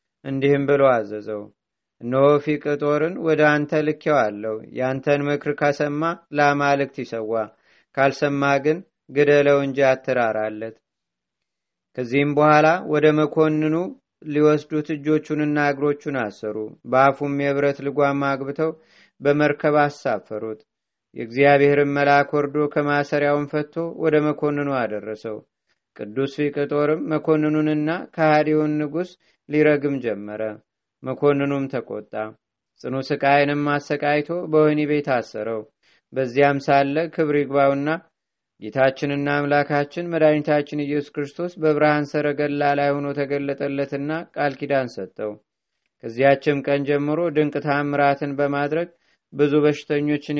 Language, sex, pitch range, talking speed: Amharic, male, 135-150 Hz, 95 wpm